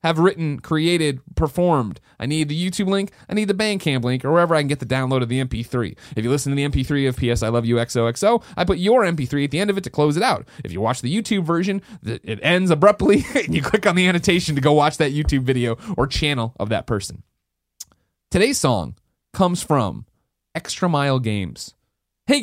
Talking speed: 225 wpm